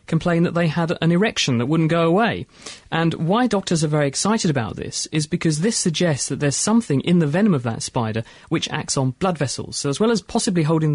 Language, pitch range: English, 130-175 Hz